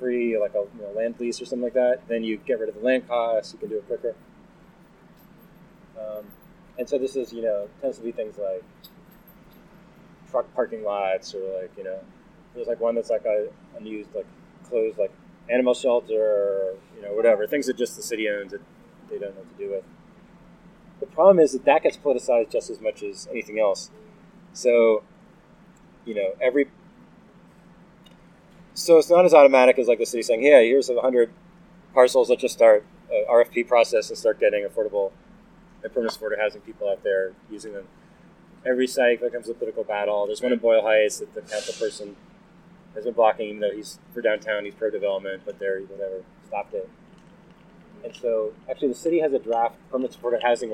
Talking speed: 195 wpm